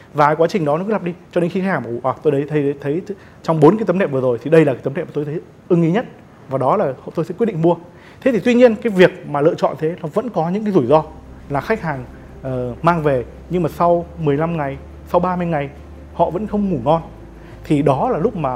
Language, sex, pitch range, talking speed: Vietnamese, male, 145-185 Hz, 290 wpm